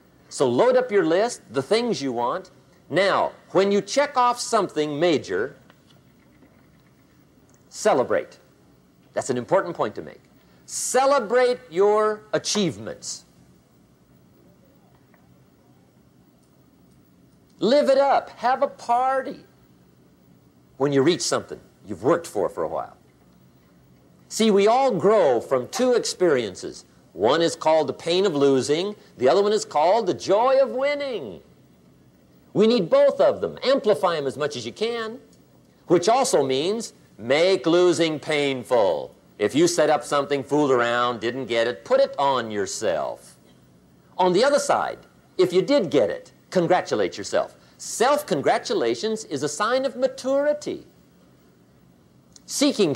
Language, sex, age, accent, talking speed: English, male, 50-69, American, 130 wpm